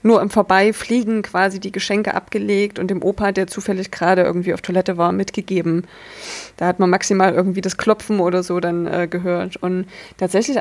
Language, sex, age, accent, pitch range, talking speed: German, female, 20-39, German, 190-215 Hz, 180 wpm